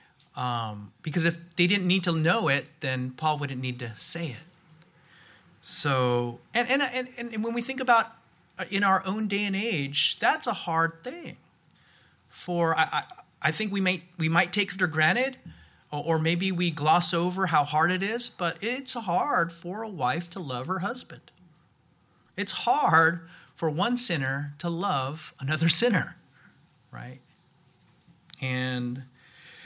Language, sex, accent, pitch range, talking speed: English, male, American, 150-190 Hz, 160 wpm